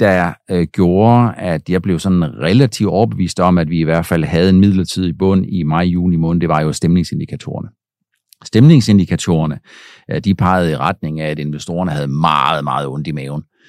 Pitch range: 85-110 Hz